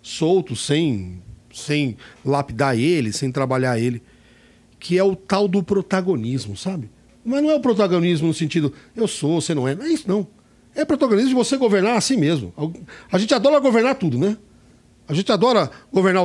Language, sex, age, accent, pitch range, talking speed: Portuguese, male, 60-79, Brazilian, 145-225 Hz, 180 wpm